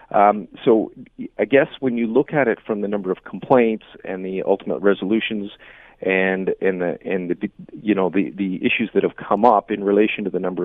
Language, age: English, 40-59